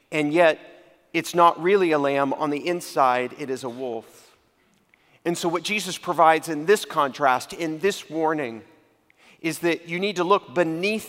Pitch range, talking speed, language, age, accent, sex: 140-175 Hz, 175 wpm, English, 40-59, American, male